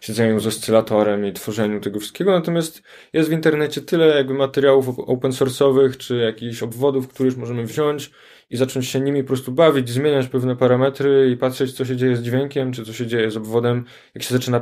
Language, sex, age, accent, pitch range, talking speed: Polish, male, 20-39, native, 110-130 Hz, 200 wpm